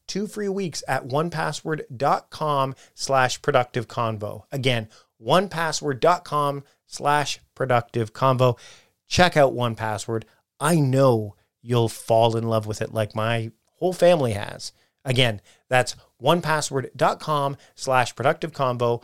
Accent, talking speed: American, 85 wpm